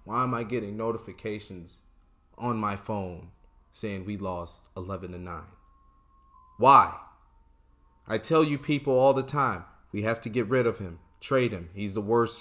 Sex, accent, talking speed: male, American, 155 wpm